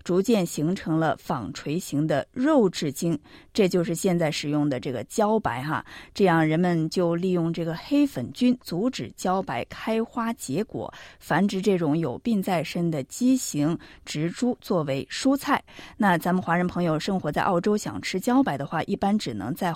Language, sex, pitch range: Chinese, female, 170-235 Hz